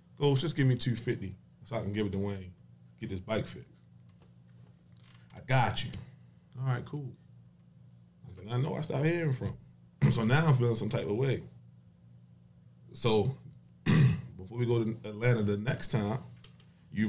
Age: 20-39